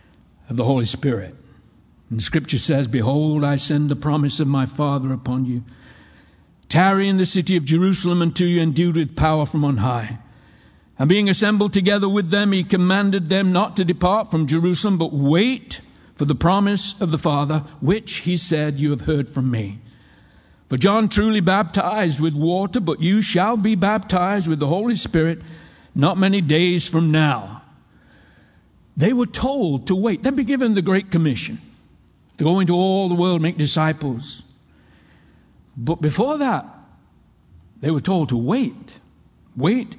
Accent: American